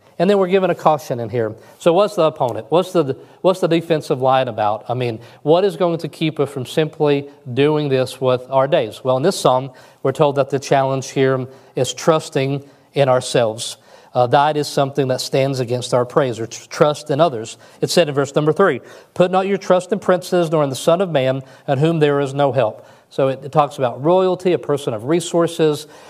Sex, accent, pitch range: male, American, 130-170 Hz